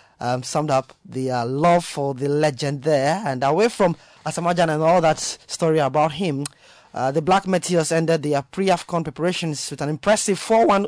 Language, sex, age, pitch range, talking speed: English, male, 20-39, 145-175 Hz, 170 wpm